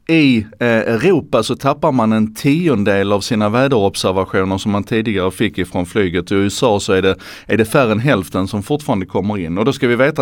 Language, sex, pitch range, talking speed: Swedish, male, 100-140 Hz, 210 wpm